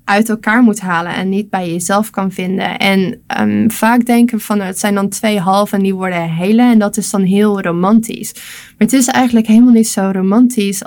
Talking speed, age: 210 wpm, 20-39